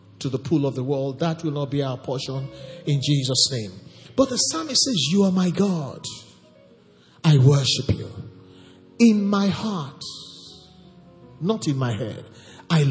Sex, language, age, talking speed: male, English, 50-69, 160 wpm